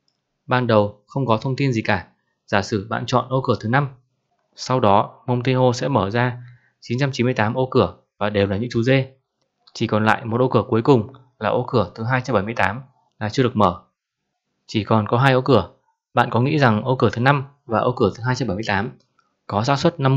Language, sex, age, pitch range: Vietnamese, male, 20-39, 110-130 Hz